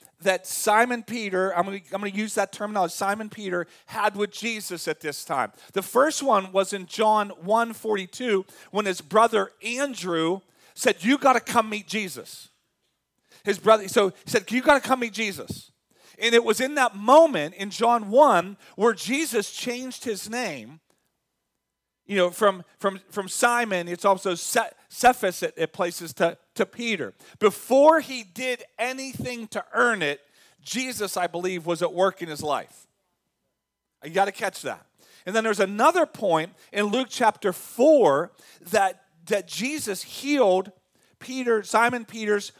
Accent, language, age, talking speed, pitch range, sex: American, English, 40-59, 165 wpm, 185-240 Hz, male